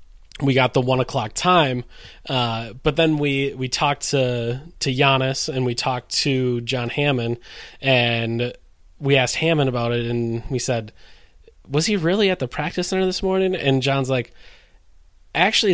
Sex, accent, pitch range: male, American, 120-145 Hz